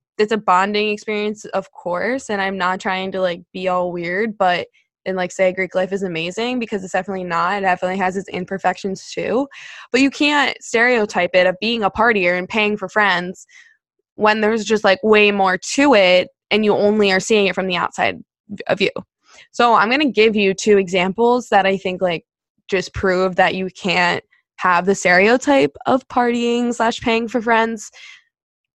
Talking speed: 190 wpm